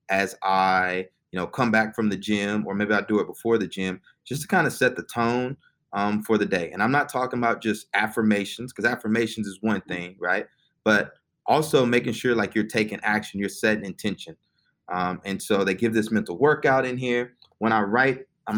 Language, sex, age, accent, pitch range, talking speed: English, male, 20-39, American, 95-115 Hz, 215 wpm